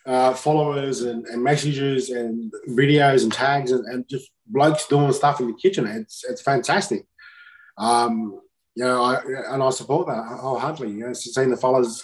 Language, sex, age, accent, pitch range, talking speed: English, male, 20-39, Australian, 120-140 Hz, 180 wpm